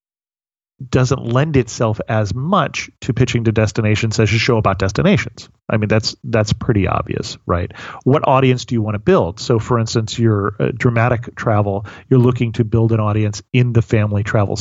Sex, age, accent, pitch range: male, 30-49, American, 105-125 Hz